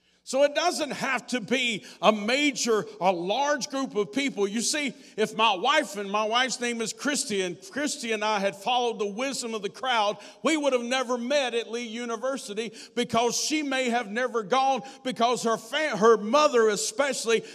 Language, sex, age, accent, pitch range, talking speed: English, male, 50-69, American, 215-270 Hz, 185 wpm